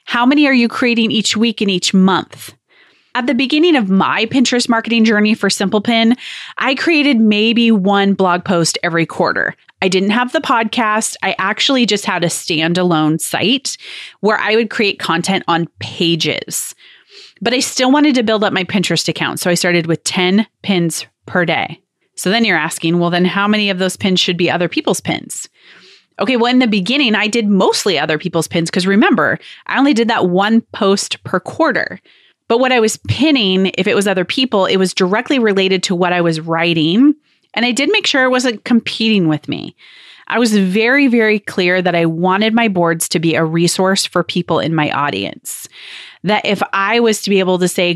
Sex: female